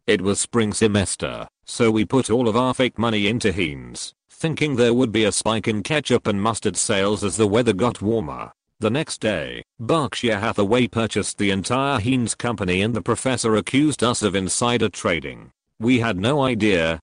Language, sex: English, male